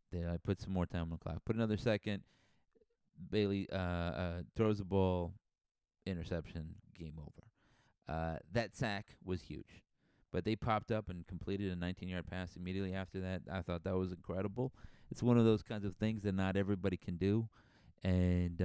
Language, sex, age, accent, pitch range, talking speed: English, male, 30-49, American, 85-105 Hz, 175 wpm